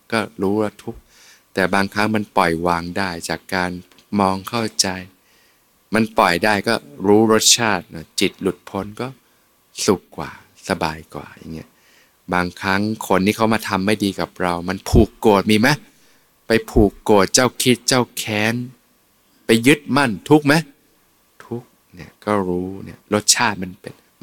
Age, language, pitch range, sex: 20-39, Thai, 95-115 Hz, male